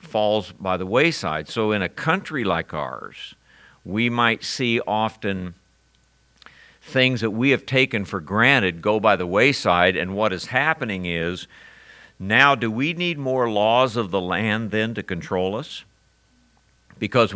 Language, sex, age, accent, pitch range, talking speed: English, male, 60-79, American, 95-120 Hz, 150 wpm